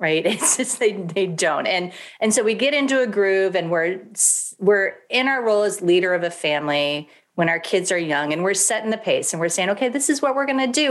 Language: English